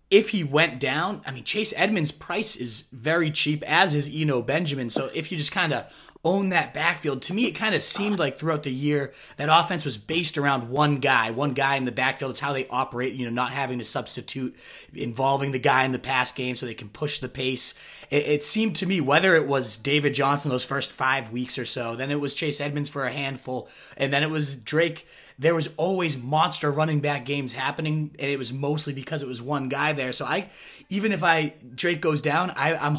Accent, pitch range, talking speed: American, 130-155 Hz, 235 wpm